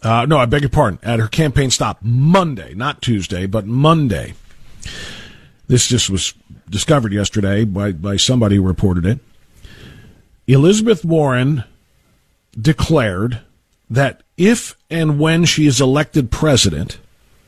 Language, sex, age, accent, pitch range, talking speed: English, male, 40-59, American, 110-160 Hz, 125 wpm